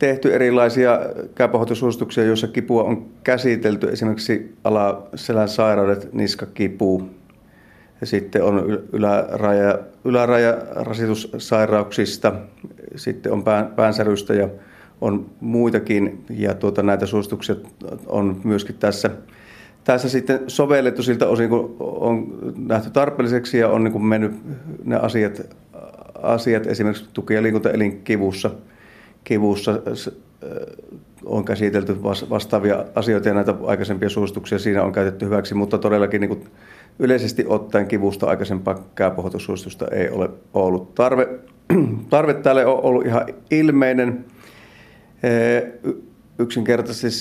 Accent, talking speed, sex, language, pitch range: native, 100 wpm, male, Finnish, 105-120 Hz